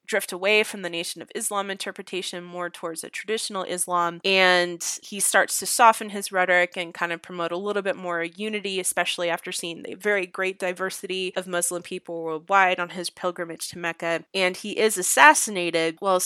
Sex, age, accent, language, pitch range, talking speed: female, 20-39, American, English, 170-195 Hz, 185 wpm